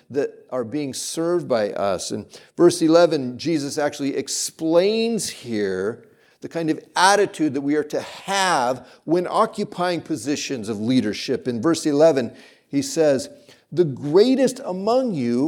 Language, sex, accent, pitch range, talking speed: English, male, American, 130-170 Hz, 140 wpm